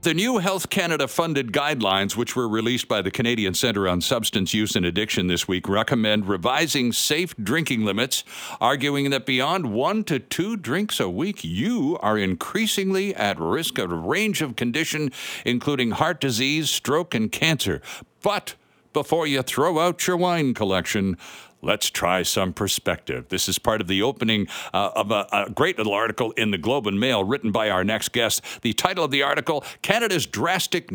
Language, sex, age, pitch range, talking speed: English, male, 60-79, 105-160 Hz, 180 wpm